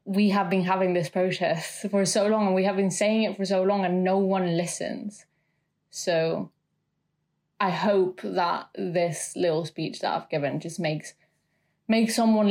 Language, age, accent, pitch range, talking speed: English, 20-39, British, 165-200 Hz, 175 wpm